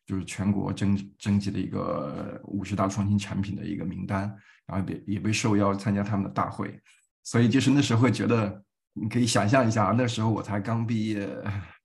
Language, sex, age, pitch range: Chinese, male, 20-39, 100-115 Hz